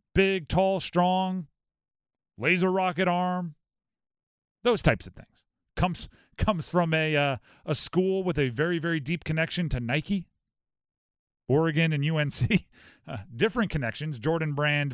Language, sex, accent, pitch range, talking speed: English, male, American, 140-180 Hz, 135 wpm